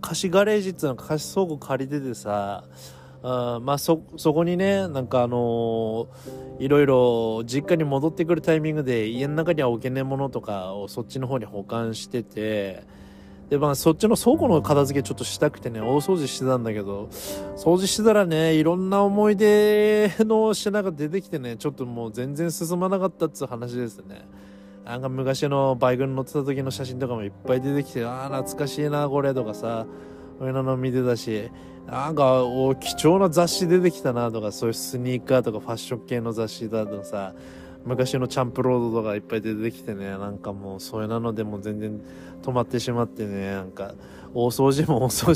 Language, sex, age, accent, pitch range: Japanese, male, 20-39, native, 110-150 Hz